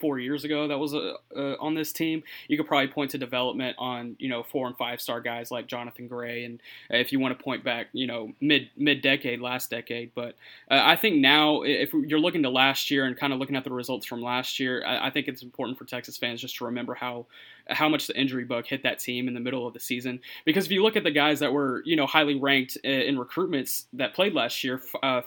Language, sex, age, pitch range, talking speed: English, male, 20-39, 125-140 Hz, 255 wpm